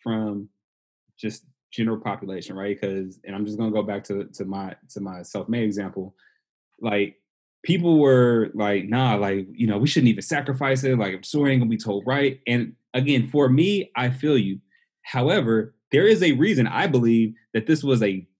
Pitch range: 110-150 Hz